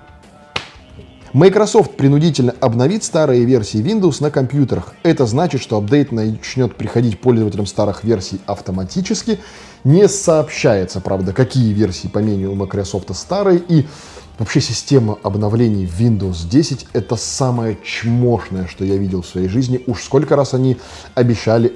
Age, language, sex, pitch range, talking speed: 20-39, Russian, male, 105-140 Hz, 130 wpm